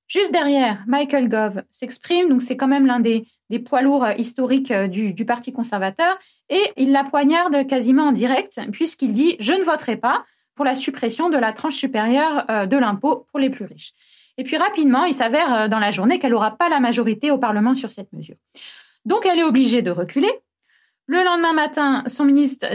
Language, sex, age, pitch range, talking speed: French, female, 20-39, 230-290 Hz, 195 wpm